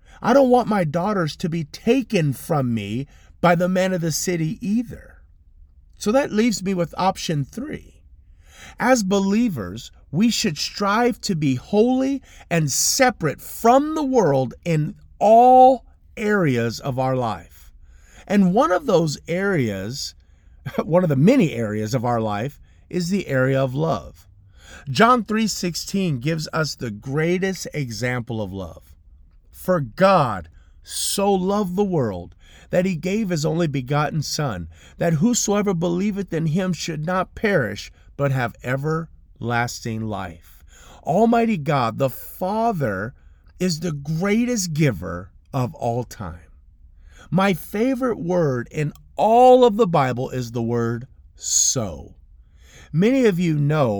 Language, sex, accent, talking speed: English, male, American, 135 wpm